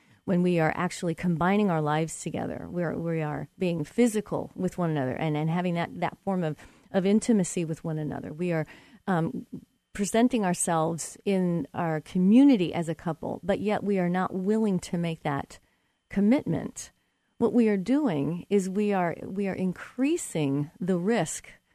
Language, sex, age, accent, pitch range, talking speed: English, female, 40-59, American, 165-210 Hz, 170 wpm